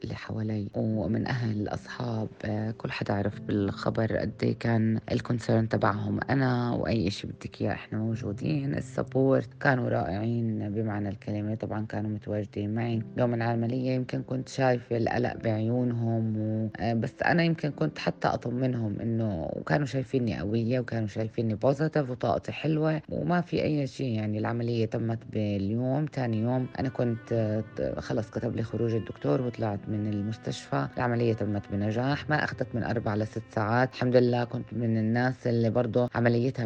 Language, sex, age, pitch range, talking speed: Arabic, female, 20-39, 105-120 Hz, 145 wpm